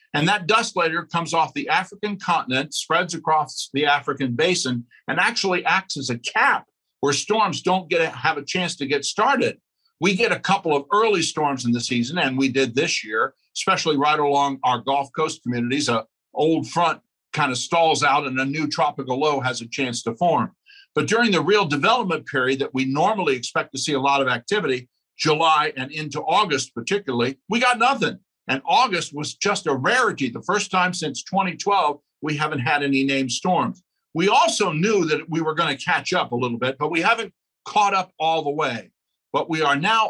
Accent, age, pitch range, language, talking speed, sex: American, 50-69, 135-180 Hz, English, 205 wpm, male